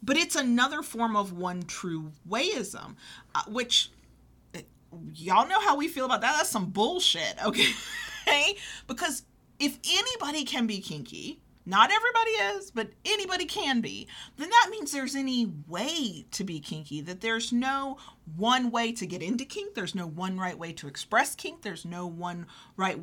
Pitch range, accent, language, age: 185-265 Hz, American, English, 40-59